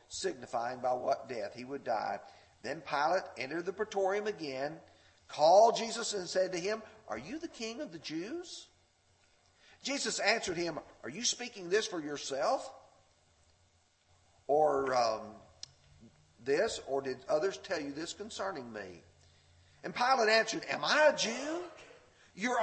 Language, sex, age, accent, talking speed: English, male, 50-69, American, 145 wpm